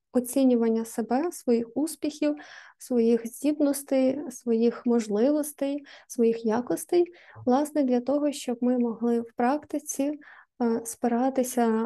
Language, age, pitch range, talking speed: Ukrainian, 20-39, 230-280 Hz, 95 wpm